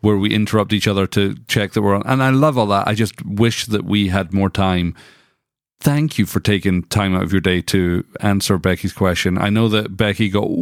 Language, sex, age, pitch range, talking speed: English, male, 40-59, 100-125 Hz, 230 wpm